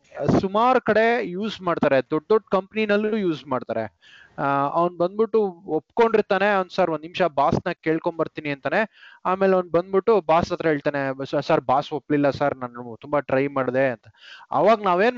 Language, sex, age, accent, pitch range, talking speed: Kannada, male, 20-39, native, 145-205 Hz, 140 wpm